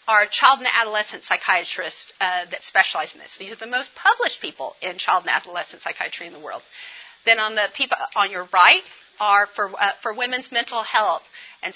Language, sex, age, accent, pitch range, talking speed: English, female, 40-59, American, 205-285 Hz, 200 wpm